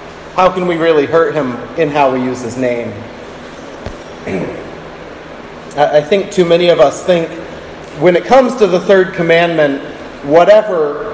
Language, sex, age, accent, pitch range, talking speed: English, male, 30-49, American, 175-235 Hz, 145 wpm